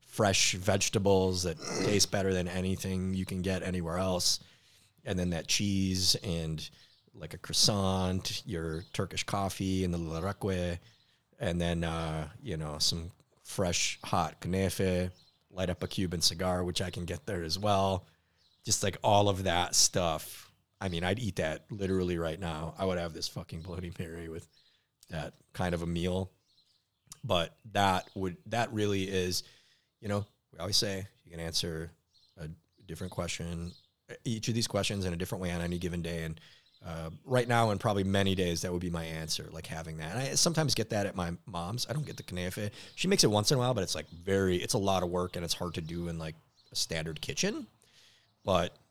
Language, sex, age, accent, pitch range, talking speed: English, male, 30-49, American, 85-100 Hz, 195 wpm